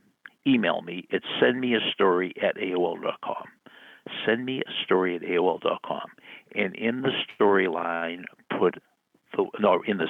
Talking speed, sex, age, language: 145 wpm, male, 60-79, English